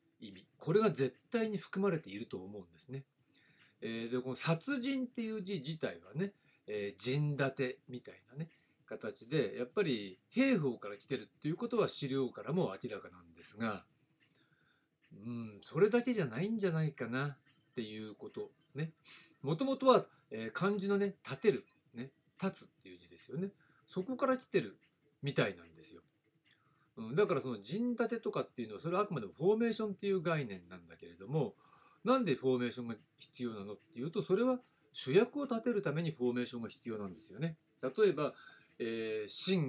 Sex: male